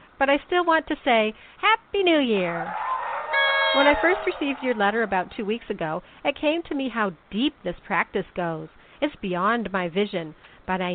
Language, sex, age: English, female, 50-69